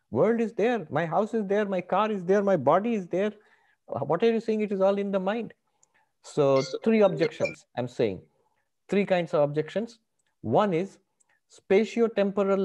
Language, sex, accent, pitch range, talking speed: English, male, Indian, 140-200 Hz, 175 wpm